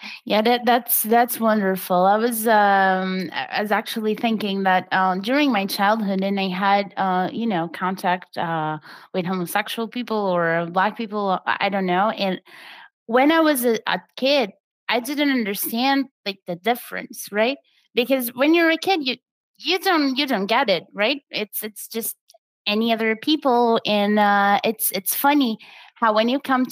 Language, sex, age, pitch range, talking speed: English, female, 20-39, 195-245 Hz, 170 wpm